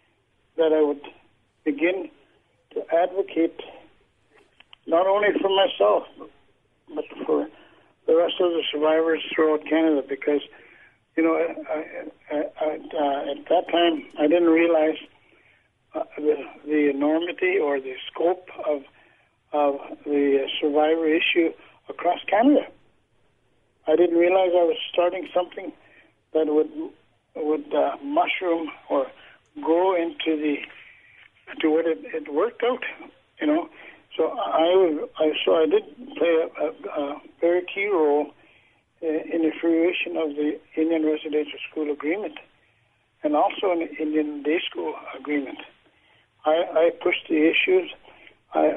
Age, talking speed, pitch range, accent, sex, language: 60-79, 130 wpm, 150-180 Hz, American, male, English